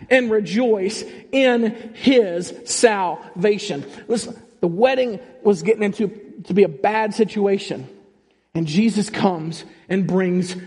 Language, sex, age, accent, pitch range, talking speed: English, male, 40-59, American, 160-195 Hz, 120 wpm